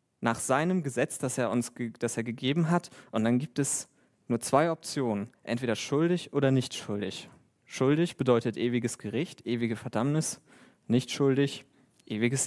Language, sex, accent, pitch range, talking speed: German, male, German, 120-150 Hz, 140 wpm